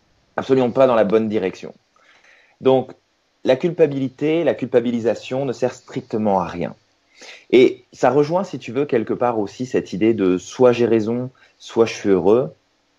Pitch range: 105-135 Hz